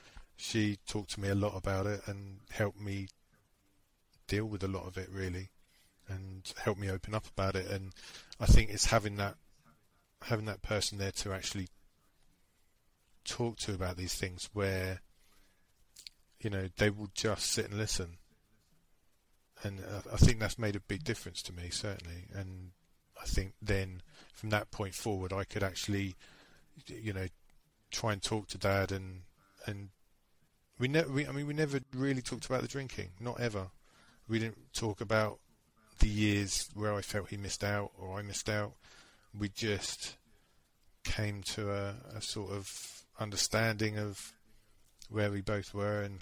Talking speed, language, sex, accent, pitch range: 165 wpm, English, male, British, 95-105 Hz